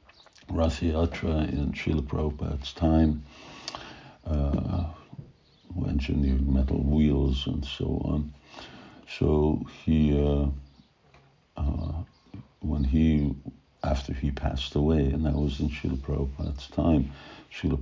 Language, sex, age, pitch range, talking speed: English, male, 60-79, 70-80 Hz, 110 wpm